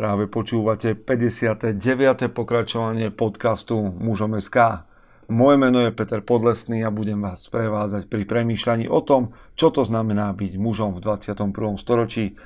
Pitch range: 110-125 Hz